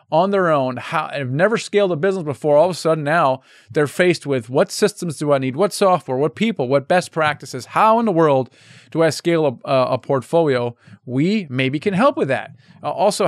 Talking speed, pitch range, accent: 210 wpm, 135-175 Hz, American